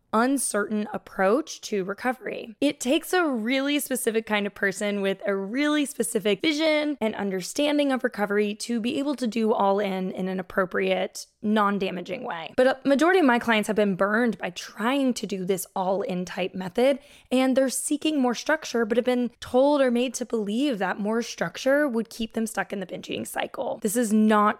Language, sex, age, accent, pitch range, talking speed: English, female, 10-29, American, 205-275 Hz, 190 wpm